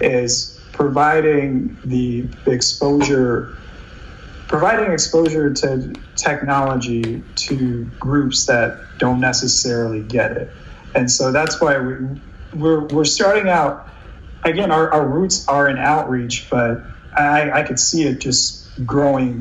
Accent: American